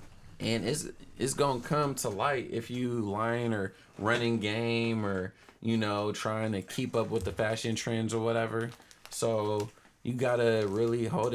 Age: 20-39